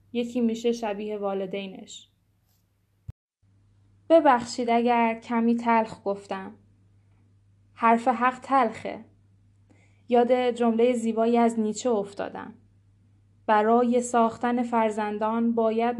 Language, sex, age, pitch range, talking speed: Persian, female, 10-29, 195-235 Hz, 85 wpm